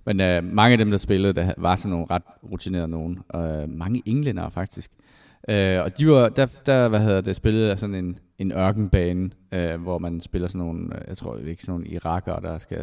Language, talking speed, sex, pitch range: Danish, 210 wpm, male, 90-105 Hz